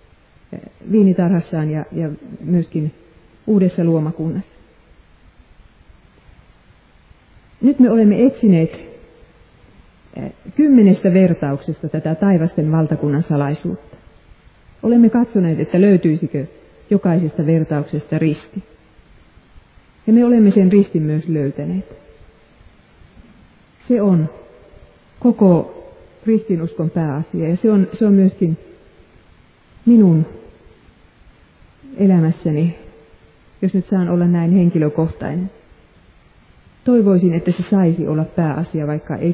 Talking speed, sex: 85 wpm, female